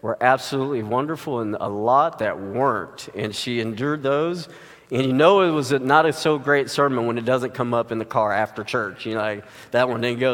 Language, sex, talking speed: English, male, 225 wpm